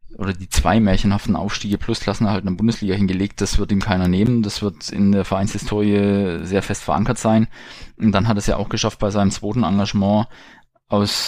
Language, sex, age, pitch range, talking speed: German, male, 20-39, 95-105 Hz, 210 wpm